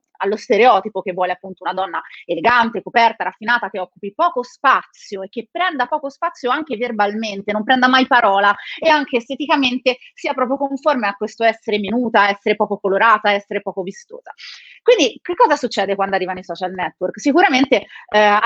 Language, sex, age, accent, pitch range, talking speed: Italian, female, 30-49, native, 195-260 Hz, 170 wpm